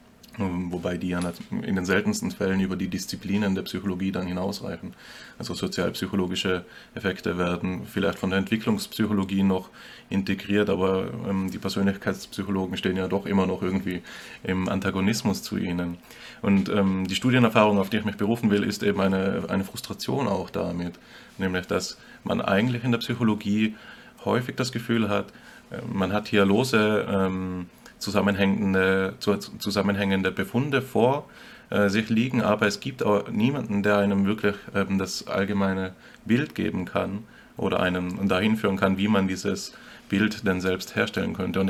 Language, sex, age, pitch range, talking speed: German, male, 20-39, 95-100 Hz, 150 wpm